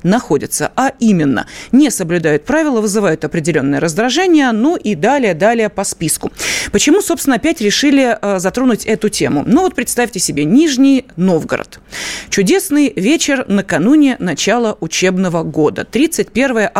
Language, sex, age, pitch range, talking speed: Russian, female, 30-49, 185-270 Hz, 120 wpm